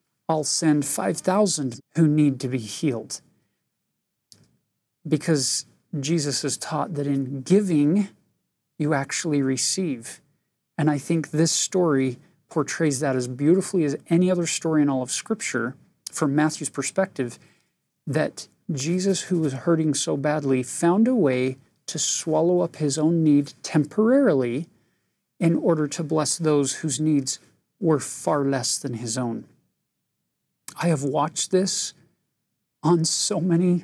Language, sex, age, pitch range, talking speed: English, male, 40-59, 145-180 Hz, 135 wpm